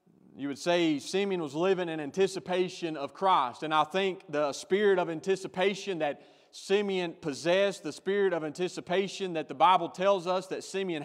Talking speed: 170 wpm